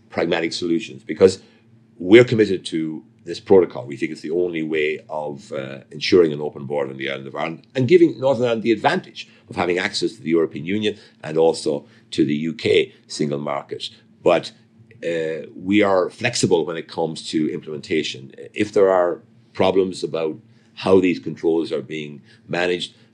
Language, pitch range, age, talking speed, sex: English, 80-115 Hz, 50-69, 170 wpm, male